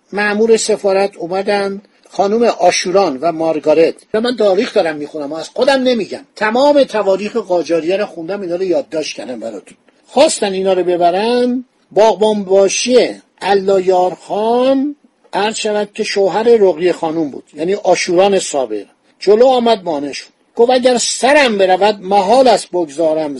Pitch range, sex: 185-245 Hz, male